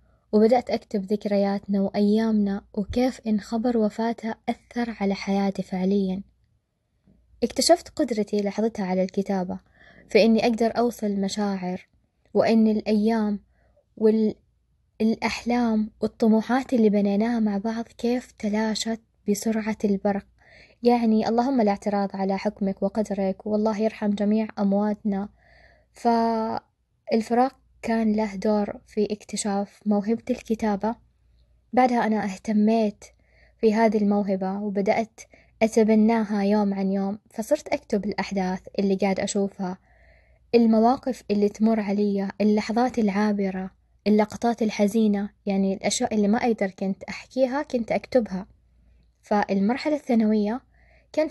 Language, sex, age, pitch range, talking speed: Arabic, female, 20-39, 200-230 Hz, 105 wpm